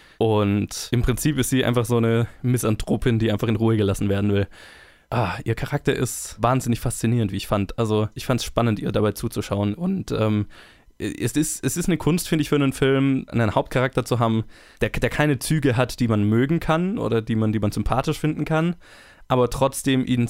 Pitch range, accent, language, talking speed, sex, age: 110-130 Hz, German, German, 200 wpm, male, 20-39